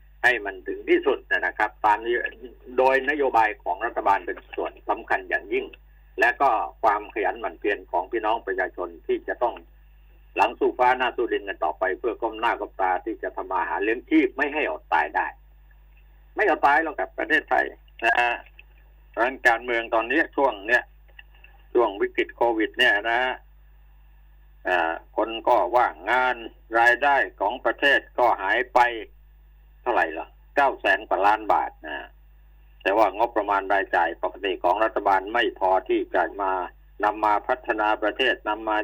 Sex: male